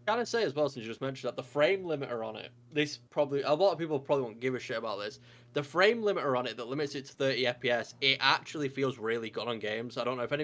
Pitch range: 120-140 Hz